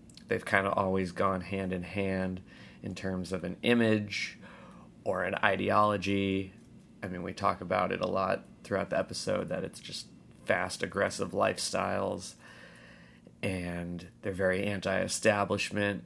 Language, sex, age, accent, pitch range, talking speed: English, male, 30-49, American, 75-100 Hz, 140 wpm